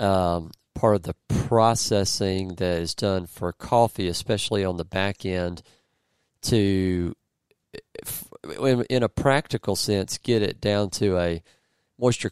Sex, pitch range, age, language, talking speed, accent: male, 85-105 Hz, 40-59, English, 125 wpm, American